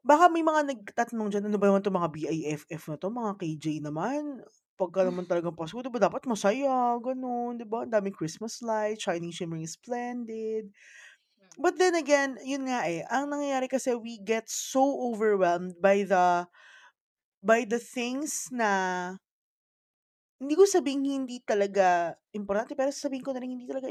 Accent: native